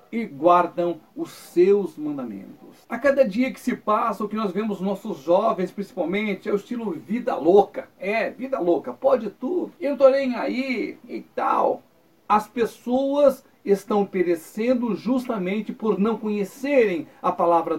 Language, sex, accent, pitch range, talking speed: Portuguese, male, Brazilian, 200-255 Hz, 150 wpm